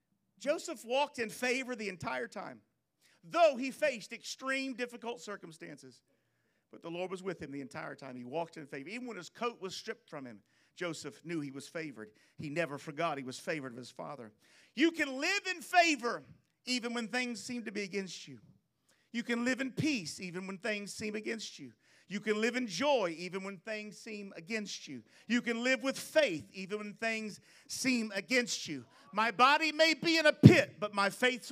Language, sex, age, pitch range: English, male, 50-69, 195-295 Hz